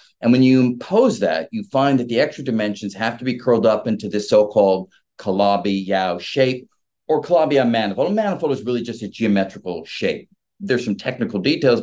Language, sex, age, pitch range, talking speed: English, male, 40-59, 115-160 Hz, 185 wpm